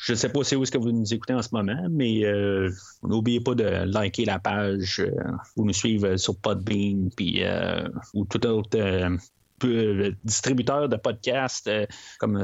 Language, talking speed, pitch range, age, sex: French, 185 wpm, 110-145 Hz, 30-49, male